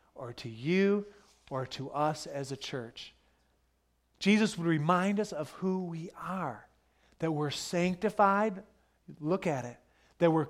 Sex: male